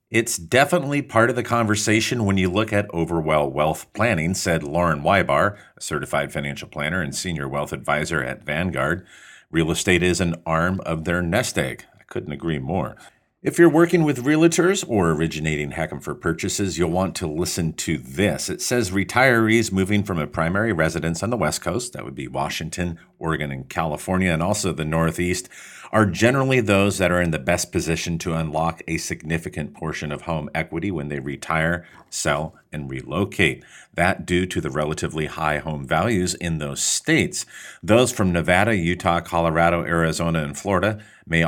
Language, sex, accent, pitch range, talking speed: English, male, American, 80-105 Hz, 175 wpm